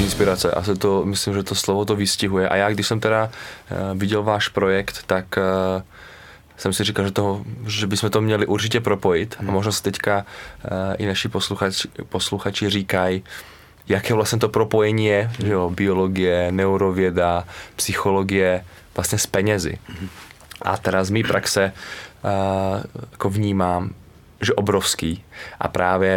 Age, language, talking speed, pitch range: 20-39, Czech, 140 wpm, 95-105 Hz